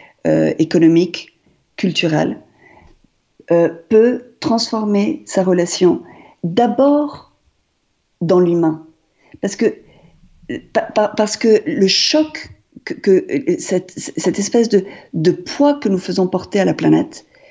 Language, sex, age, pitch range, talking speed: French, female, 50-69, 165-195 Hz, 115 wpm